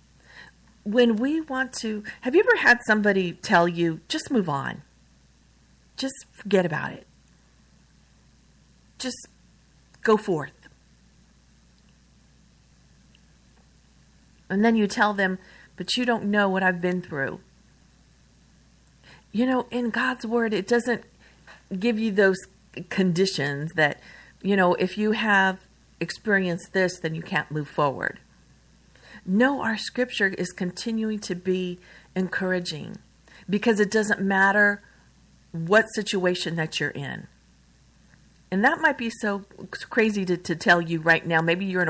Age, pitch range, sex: 50-69, 160-215 Hz, female